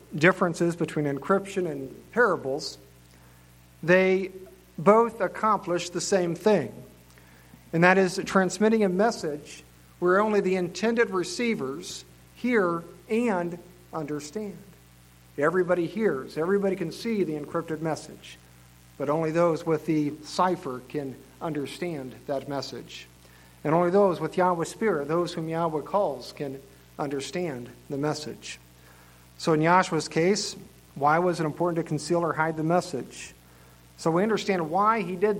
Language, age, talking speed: English, 50-69, 130 wpm